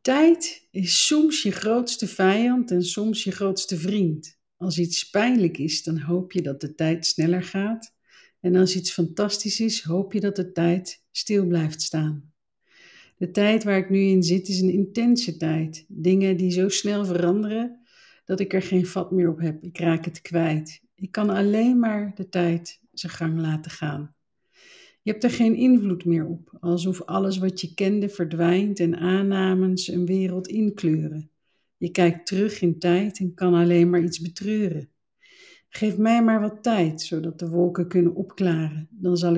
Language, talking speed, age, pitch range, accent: Dutch, 175 wpm, 50-69, 170-210 Hz, Dutch